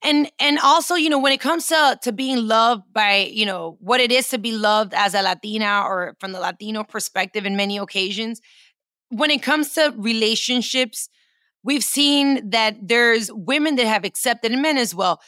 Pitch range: 215-265 Hz